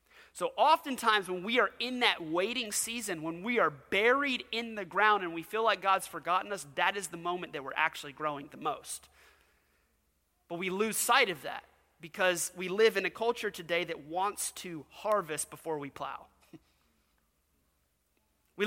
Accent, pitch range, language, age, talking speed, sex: American, 155-210 Hz, English, 30-49, 175 wpm, male